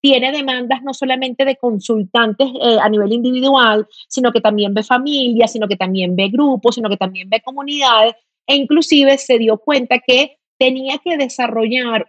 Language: Spanish